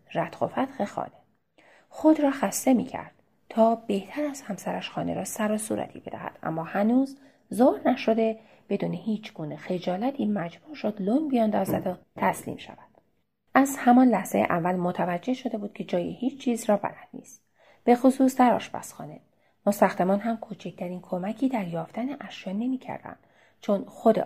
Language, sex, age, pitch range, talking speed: Persian, female, 30-49, 190-240 Hz, 155 wpm